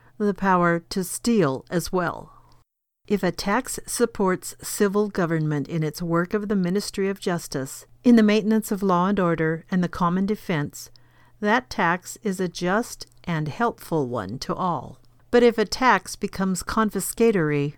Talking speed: 160 wpm